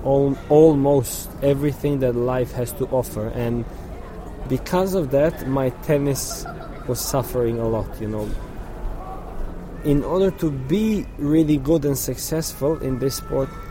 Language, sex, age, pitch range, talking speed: English, male, 20-39, 120-145 Hz, 130 wpm